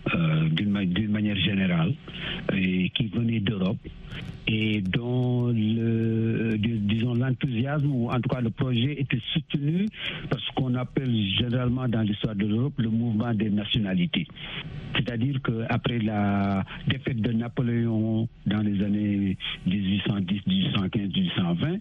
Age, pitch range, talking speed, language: 60-79, 105-140 Hz, 120 wpm, French